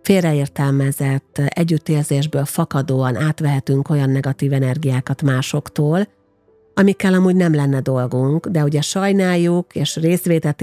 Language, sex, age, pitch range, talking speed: Hungarian, female, 50-69, 130-165 Hz, 100 wpm